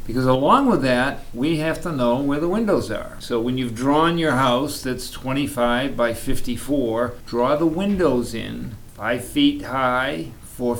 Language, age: English, 50-69